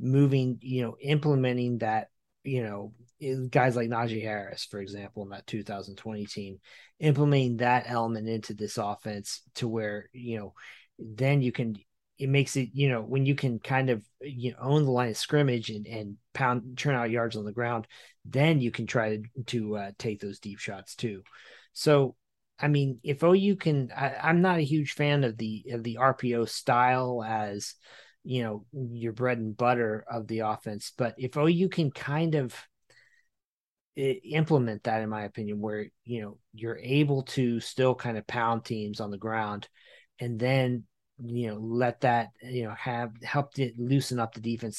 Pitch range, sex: 110-135 Hz, male